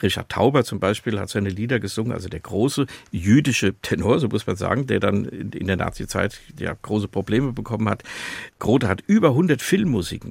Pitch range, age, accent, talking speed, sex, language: 100-120 Hz, 50-69, German, 185 wpm, male, German